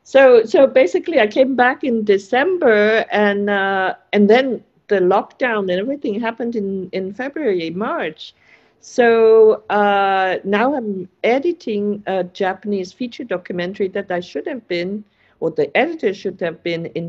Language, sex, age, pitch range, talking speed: English, female, 50-69, 170-225 Hz, 150 wpm